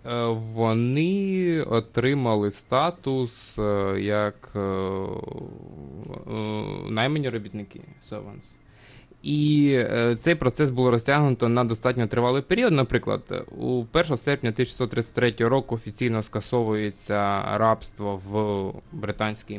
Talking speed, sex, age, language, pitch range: 85 wpm, male, 20-39, Ukrainian, 110-140 Hz